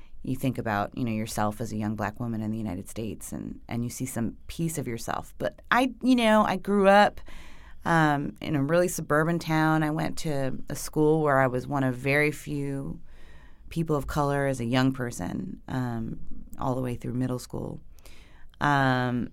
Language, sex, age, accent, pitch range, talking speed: English, female, 30-49, American, 125-170 Hz, 195 wpm